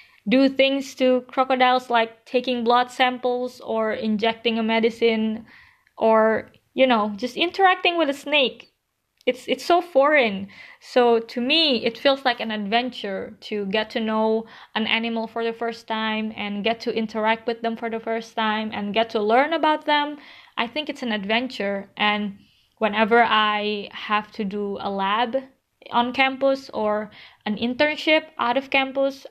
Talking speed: 160 wpm